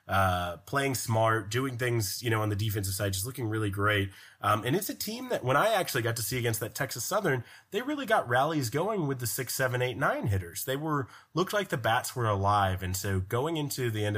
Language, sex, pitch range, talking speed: English, male, 95-115 Hz, 235 wpm